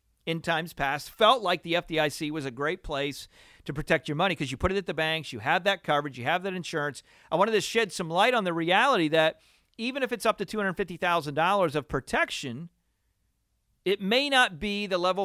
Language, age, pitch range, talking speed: English, 40-59, 145-195 Hz, 215 wpm